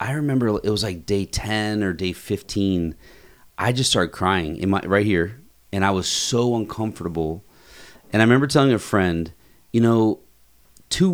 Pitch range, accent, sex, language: 85-110 Hz, American, male, English